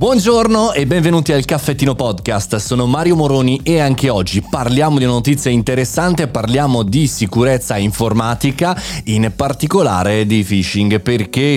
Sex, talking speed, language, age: male, 135 wpm, Italian, 30-49